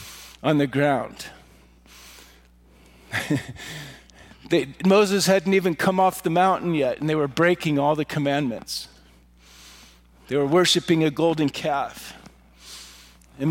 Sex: male